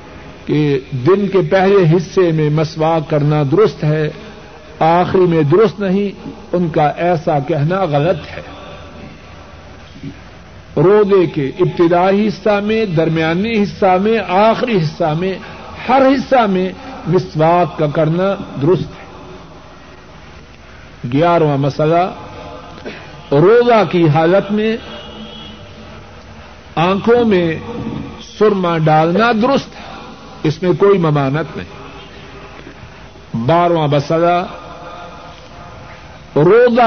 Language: Urdu